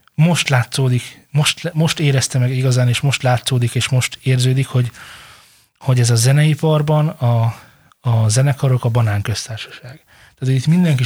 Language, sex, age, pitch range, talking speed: Hungarian, male, 20-39, 120-145 Hz, 140 wpm